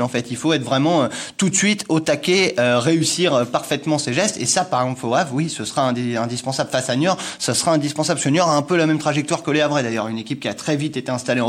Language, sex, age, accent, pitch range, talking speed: French, male, 20-39, French, 135-175 Hz, 280 wpm